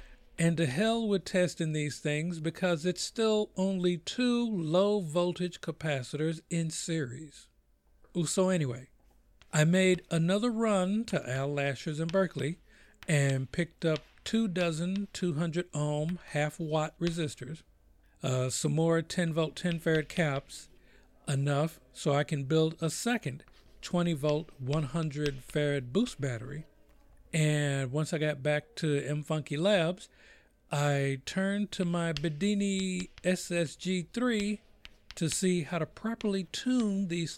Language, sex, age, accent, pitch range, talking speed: English, male, 50-69, American, 145-185 Hz, 130 wpm